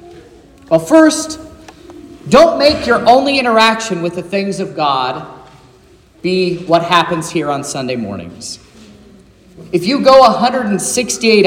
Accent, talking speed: American, 120 wpm